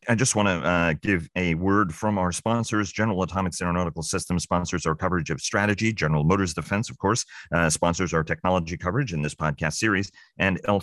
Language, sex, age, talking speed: English, male, 40-59, 200 wpm